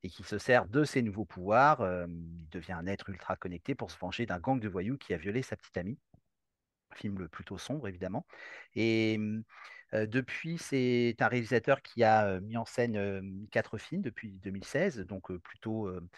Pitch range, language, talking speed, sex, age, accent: 100-125 Hz, French, 180 wpm, male, 40-59, French